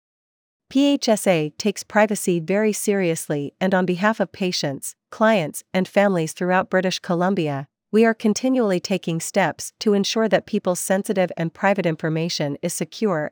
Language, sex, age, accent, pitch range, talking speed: English, female, 40-59, American, 165-200 Hz, 140 wpm